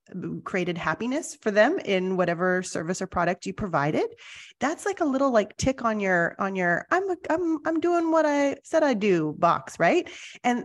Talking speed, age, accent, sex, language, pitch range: 185 wpm, 30-49, American, female, English, 185-260 Hz